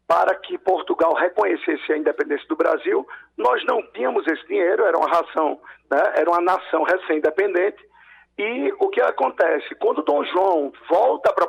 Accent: Brazilian